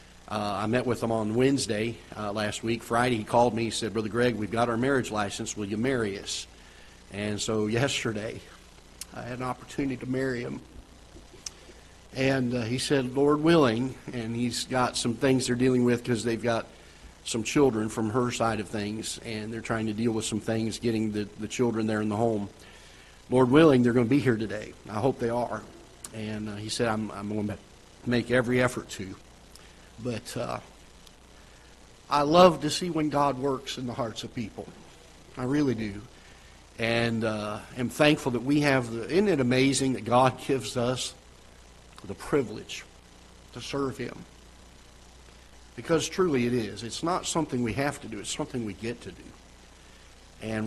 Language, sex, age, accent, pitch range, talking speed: English, male, 50-69, American, 105-125 Hz, 185 wpm